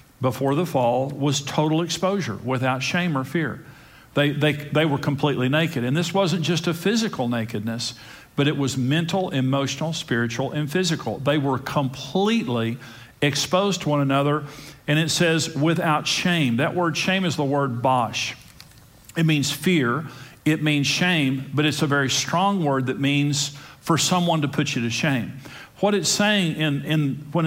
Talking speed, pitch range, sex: 170 wpm, 135-165 Hz, male